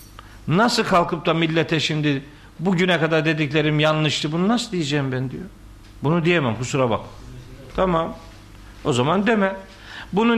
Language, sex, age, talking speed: Turkish, male, 50-69, 135 wpm